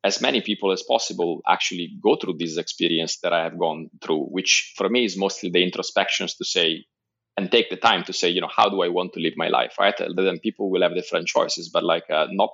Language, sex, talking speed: English, male, 245 wpm